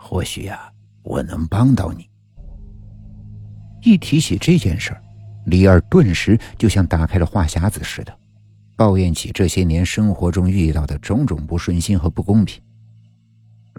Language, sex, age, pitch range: Chinese, male, 60-79, 85-110 Hz